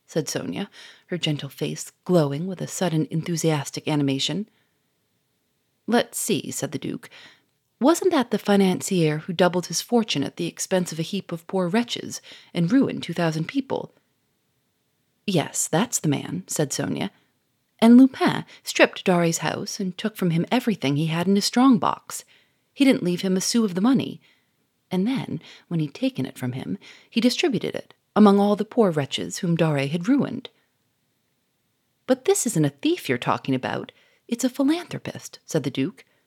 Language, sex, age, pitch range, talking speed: English, female, 30-49, 145-220 Hz, 170 wpm